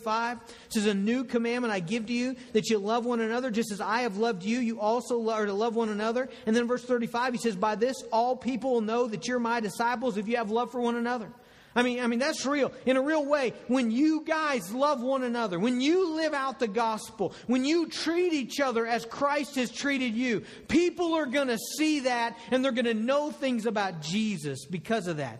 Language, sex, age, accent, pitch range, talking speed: English, male, 40-59, American, 230-280 Hz, 230 wpm